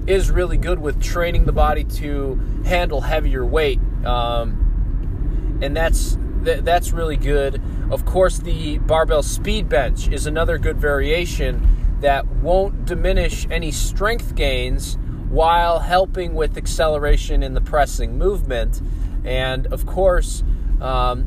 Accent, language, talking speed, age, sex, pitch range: American, English, 130 wpm, 20-39, male, 90-150 Hz